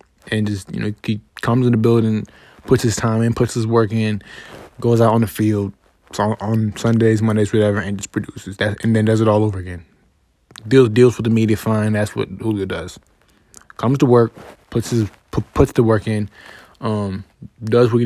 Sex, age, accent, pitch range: male, 20-39, American, 100-120 Hz